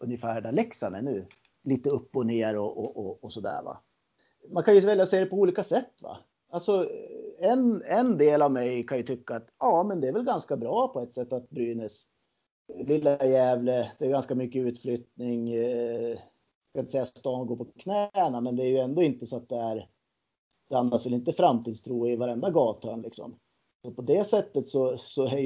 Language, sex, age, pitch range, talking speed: Swedish, male, 30-49, 115-145 Hz, 205 wpm